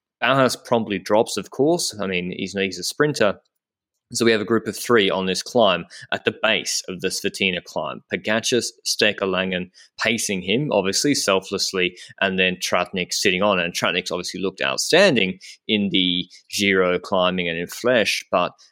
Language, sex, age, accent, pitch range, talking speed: English, male, 20-39, Australian, 95-125 Hz, 165 wpm